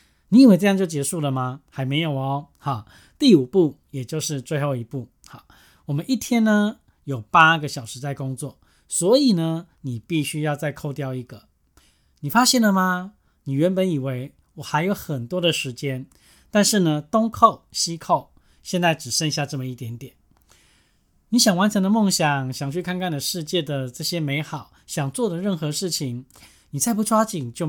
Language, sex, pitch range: Chinese, male, 135-180 Hz